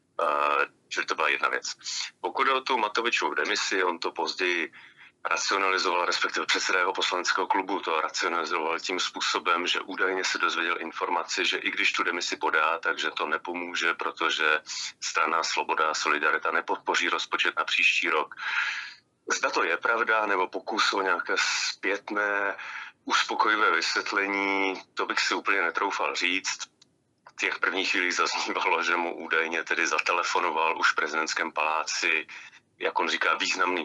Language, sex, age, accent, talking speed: Czech, male, 30-49, native, 145 wpm